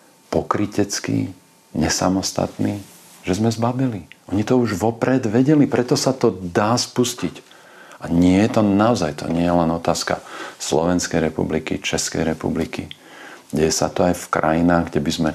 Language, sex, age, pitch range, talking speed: Slovak, male, 40-59, 80-105 Hz, 150 wpm